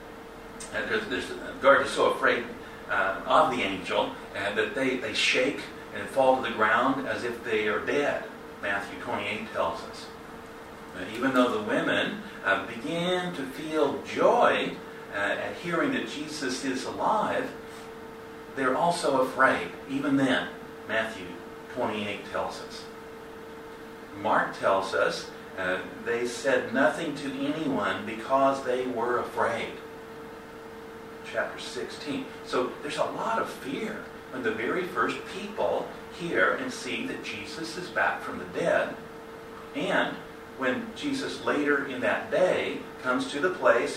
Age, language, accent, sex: 50-69, Japanese, American, male